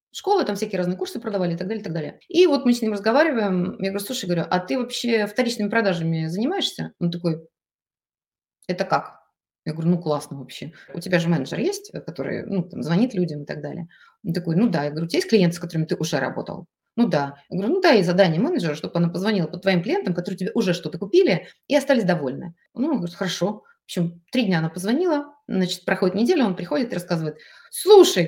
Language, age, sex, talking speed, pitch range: Russian, 20-39, female, 225 wpm, 175-285 Hz